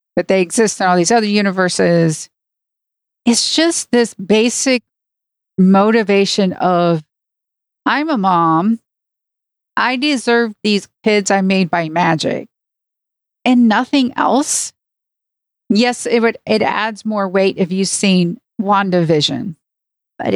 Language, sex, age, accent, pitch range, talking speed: English, female, 40-59, American, 185-230 Hz, 120 wpm